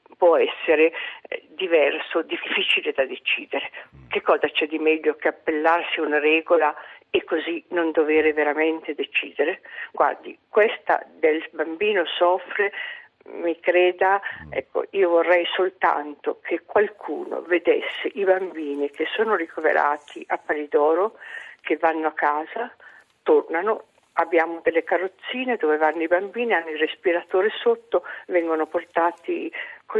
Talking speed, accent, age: 125 wpm, native, 50-69